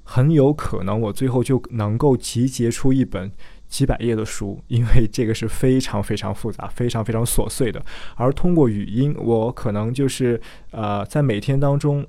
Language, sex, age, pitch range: Chinese, male, 20-39, 110-135 Hz